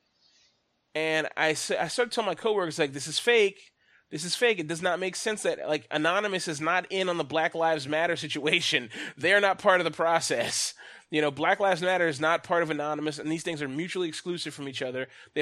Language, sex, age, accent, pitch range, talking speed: English, male, 30-49, American, 145-190 Hz, 230 wpm